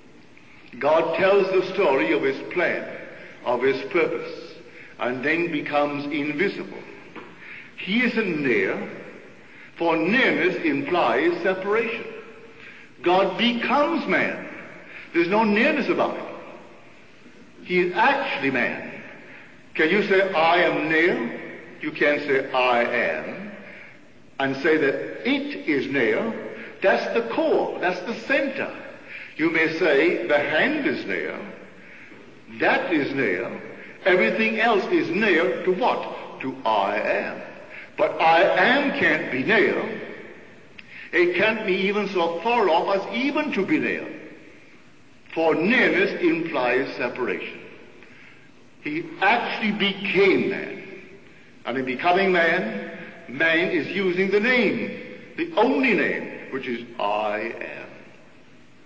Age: 60-79